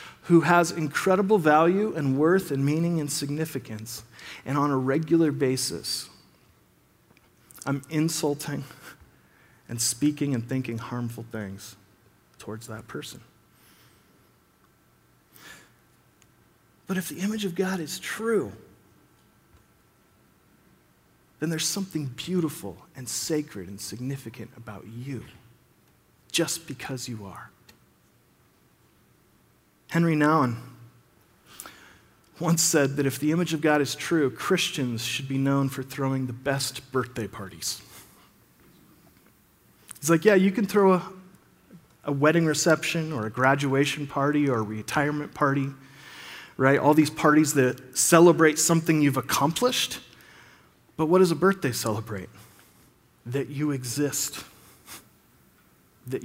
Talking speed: 115 wpm